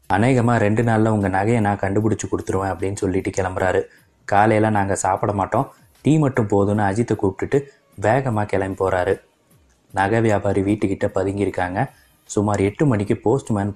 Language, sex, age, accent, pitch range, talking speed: Tamil, male, 20-39, native, 95-110 Hz, 135 wpm